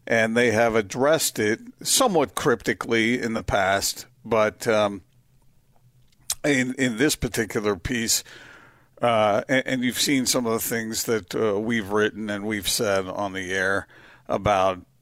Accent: American